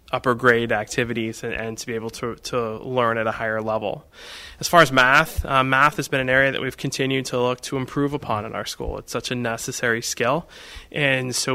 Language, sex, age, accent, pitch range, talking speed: English, male, 20-39, American, 115-130 Hz, 225 wpm